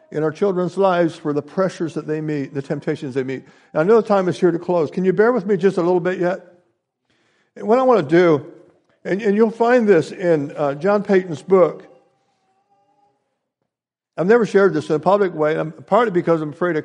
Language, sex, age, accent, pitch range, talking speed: English, male, 60-79, American, 150-195 Hz, 220 wpm